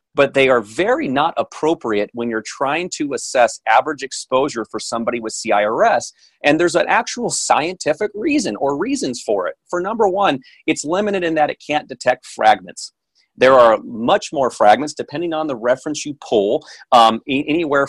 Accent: American